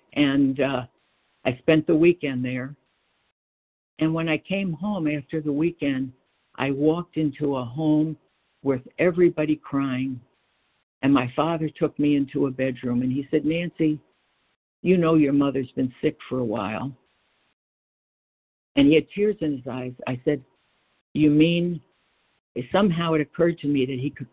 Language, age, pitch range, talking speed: English, 60-79, 125-155 Hz, 155 wpm